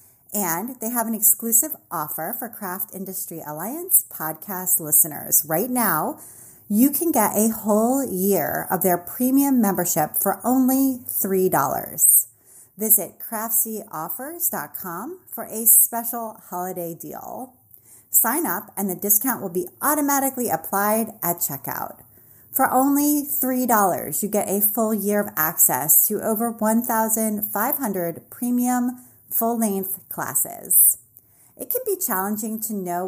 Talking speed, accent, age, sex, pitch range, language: 120 wpm, American, 30-49, female, 170-235 Hz, English